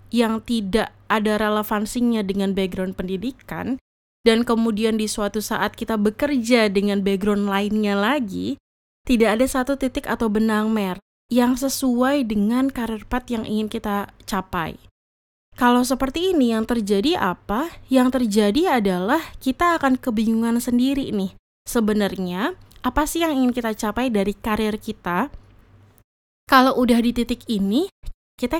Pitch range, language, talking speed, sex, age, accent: 205-255 Hz, Indonesian, 135 wpm, female, 20-39, native